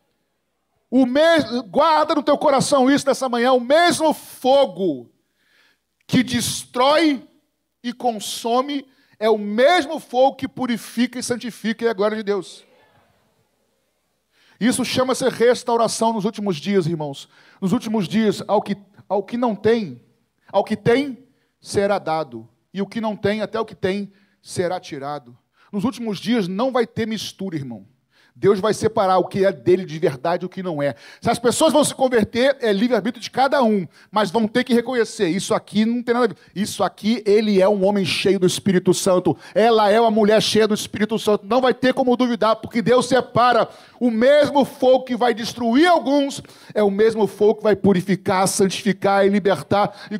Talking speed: 180 wpm